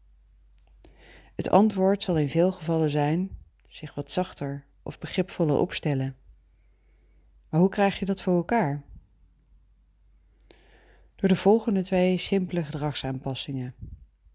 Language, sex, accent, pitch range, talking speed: Dutch, female, Dutch, 120-185 Hz, 110 wpm